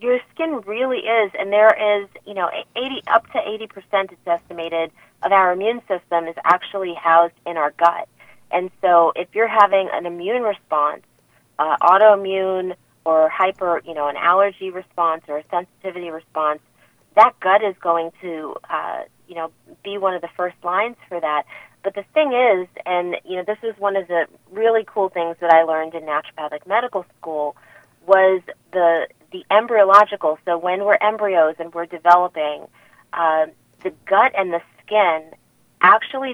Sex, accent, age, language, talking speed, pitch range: female, American, 30-49, English, 165 wpm, 165-200 Hz